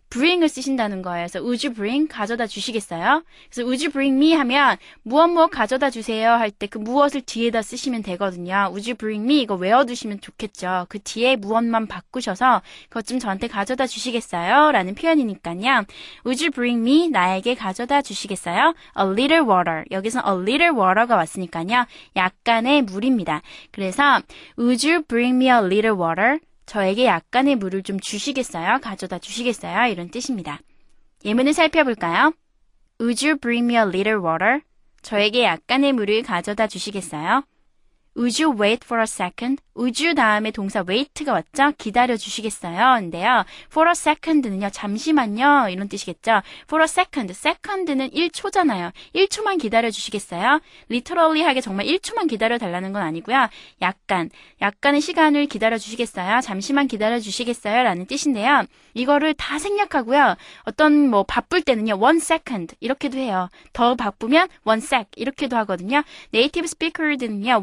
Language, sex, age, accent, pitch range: Korean, female, 20-39, native, 205-285 Hz